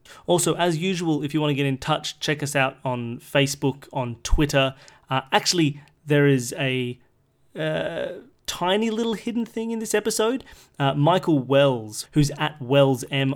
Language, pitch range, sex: English, 125-150 Hz, male